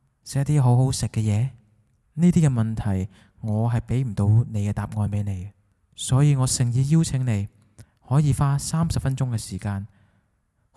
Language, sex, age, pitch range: Chinese, male, 20-39, 105-135 Hz